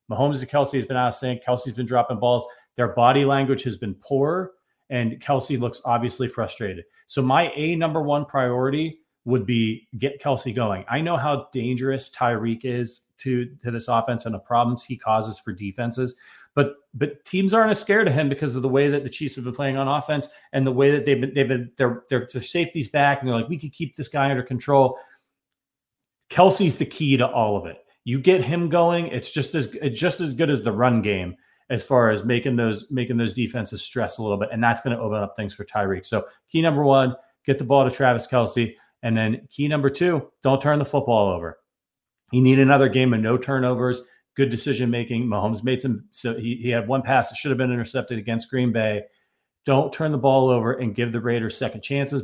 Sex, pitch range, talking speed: male, 120-140 Hz, 225 wpm